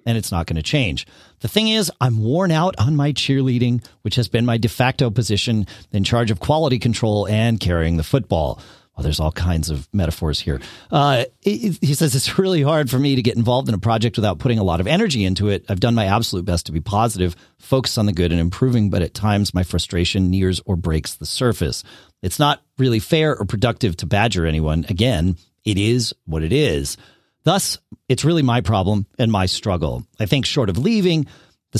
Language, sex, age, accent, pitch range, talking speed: English, male, 40-59, American, 90-130 Hz, 215 wpm